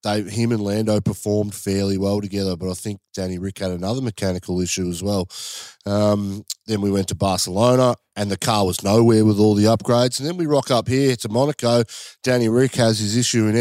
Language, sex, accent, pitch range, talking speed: English, male, Australian, 100-120 Hz, 205 wpm